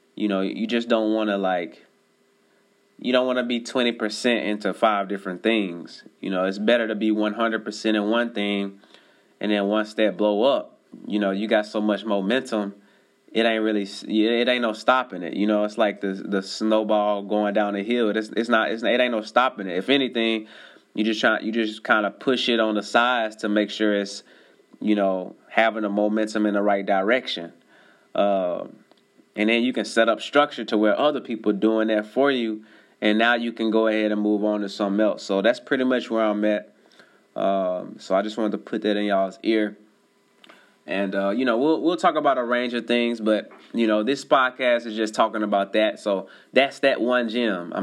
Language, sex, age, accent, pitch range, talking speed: English, male, 20-39, American, 100-115 Hz, 215 wpm